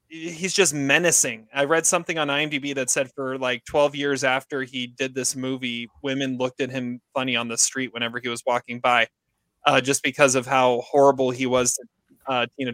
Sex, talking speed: male, 205 wpm